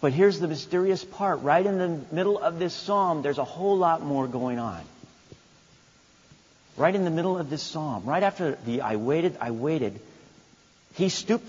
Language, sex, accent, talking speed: English, male, American, 185 wpm